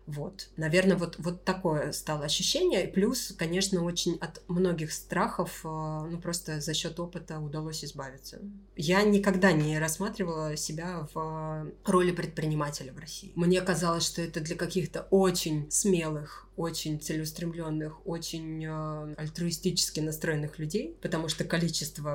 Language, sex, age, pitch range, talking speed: Russian, female, 20-39, 155-180 Hz, 125 wpm